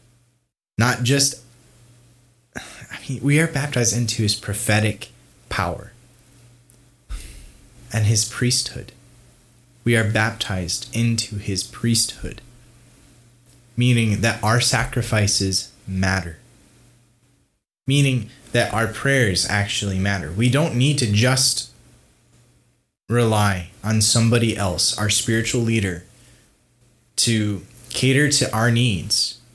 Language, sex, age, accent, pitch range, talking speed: English, male, 20-39, American, 100-125 Hz, 95 wpm